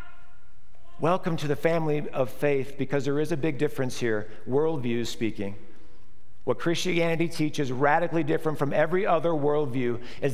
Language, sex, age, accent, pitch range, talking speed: English, male, 50-69, American, 125-165 Hz, 145 wpm